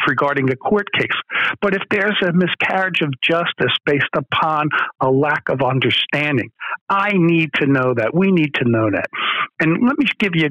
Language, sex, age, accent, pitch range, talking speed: English, male, 60-79, American, 145-185 Hz, 185 wpm